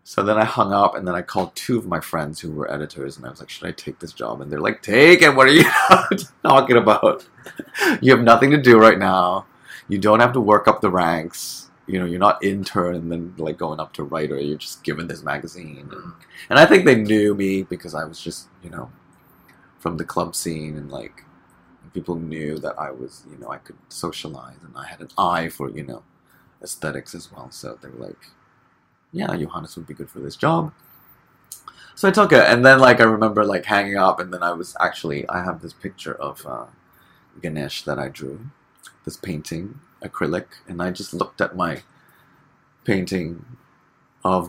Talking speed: 210 wpm